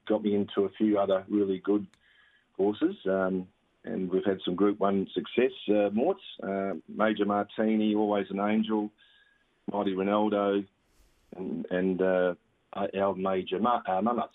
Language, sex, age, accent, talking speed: English, male, 40-59, Australian, 145 wpm